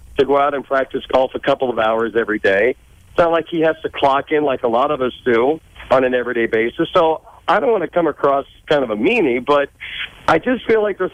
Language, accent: English, American